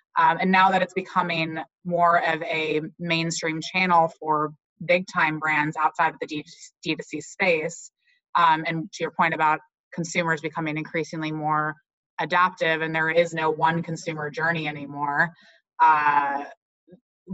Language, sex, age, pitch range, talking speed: English, female, 20-39, 155-175 Hz, 135 wpm